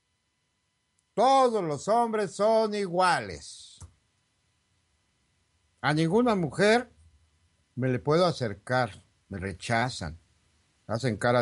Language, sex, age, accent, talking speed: Spanish, male, 60-79, Mexican, 85 wpm